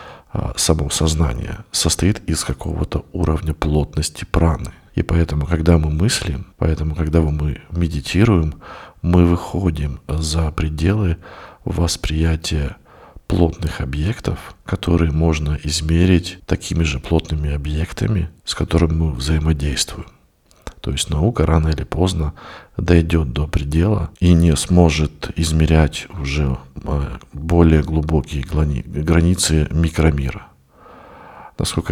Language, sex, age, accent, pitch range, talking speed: Russian, male, 50-69, native, 75-85 Hz, 100 wpm